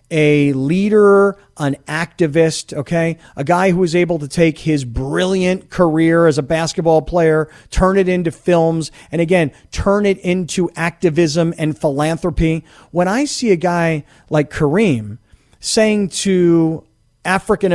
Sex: male